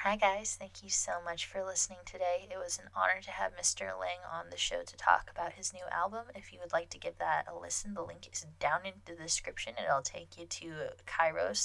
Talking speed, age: 240 wpm, 10-29